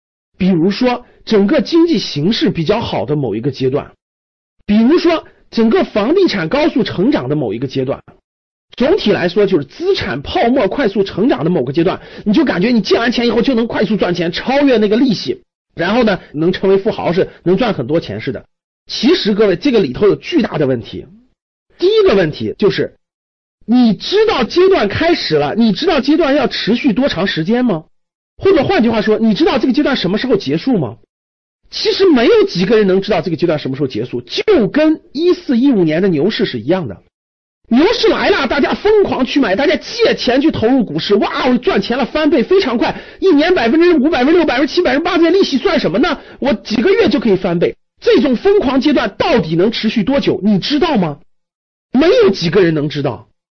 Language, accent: Chinese, native